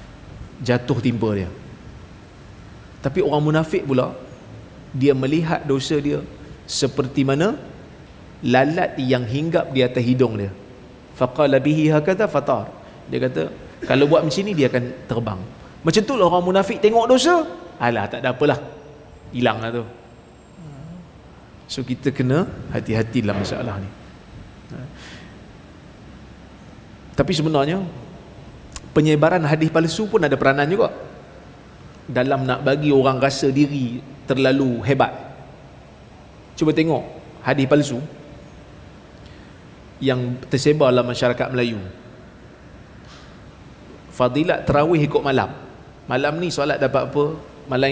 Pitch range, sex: 125-150 Hz, male